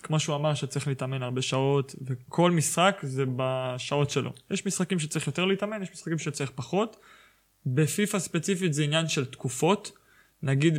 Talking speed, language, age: 155 wpm, Hebrew, 20-39